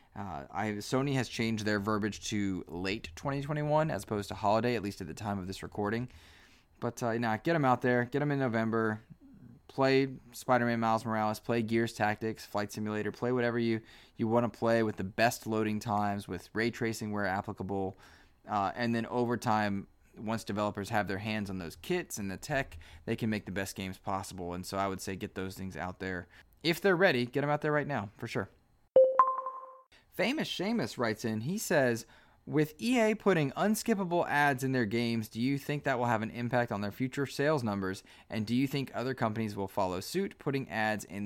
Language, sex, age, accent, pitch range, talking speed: English, male, 20-39, American, 100-130 Hz, 205 wpm